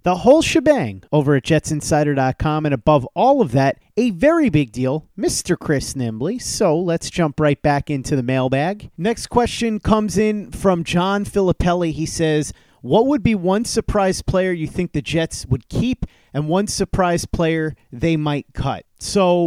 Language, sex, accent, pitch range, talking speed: English, male, American, 140-180 Hz, 170 wpm